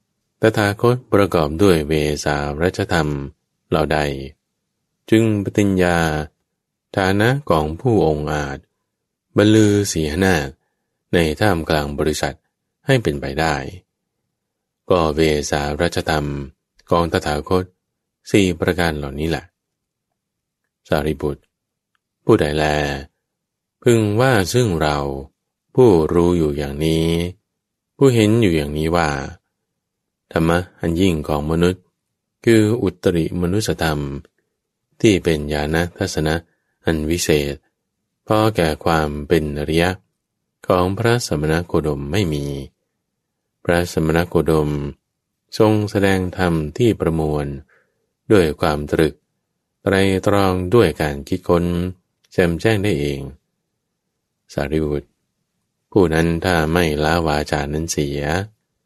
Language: English